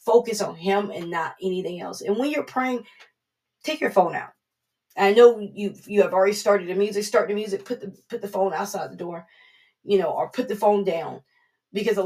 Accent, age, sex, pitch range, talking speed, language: American, 20-39, female, 195-240 Hz, 220 wpm, English